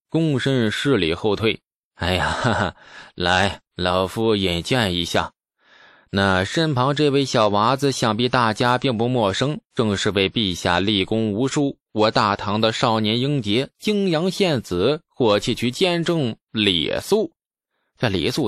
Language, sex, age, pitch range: Chinese, male, 20-39, 95-130 Hz